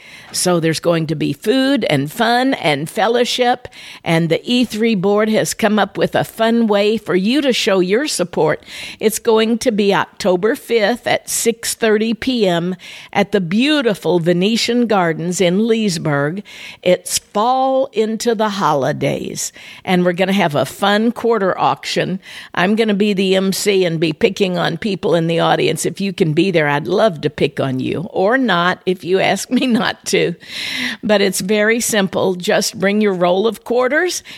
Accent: American